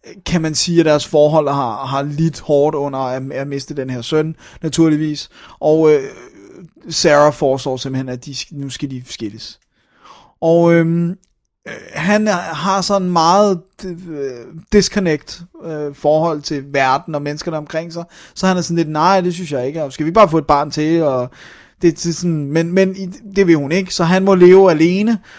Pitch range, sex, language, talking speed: 145-175 Hz, male, Danish, 190 wpm